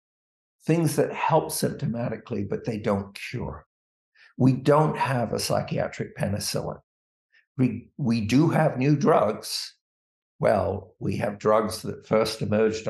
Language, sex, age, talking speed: English, male, 60-79, 125 wpm